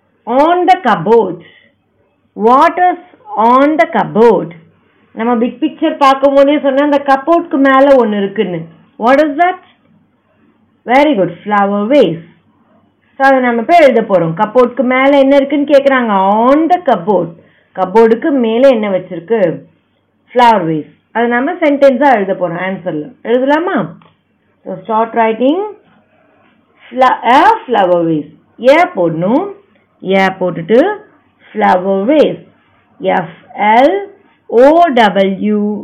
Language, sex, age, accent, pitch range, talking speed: Tamil, female, 30-49, native, 195-280 Hz, 45 wpm